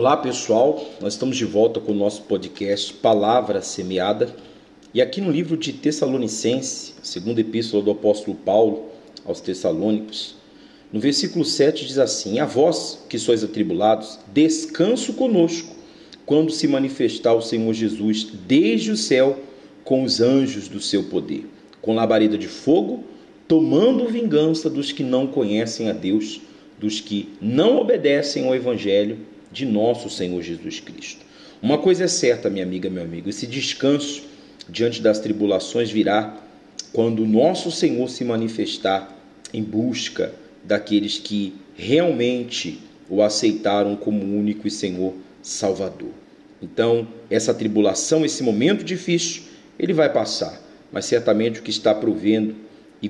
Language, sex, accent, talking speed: Portuguese, male, Brazilian, 140 wpm